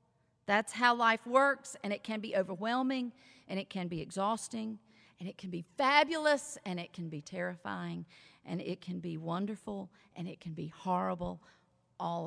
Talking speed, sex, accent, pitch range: 170 wpm, female, American, 180-265 Hz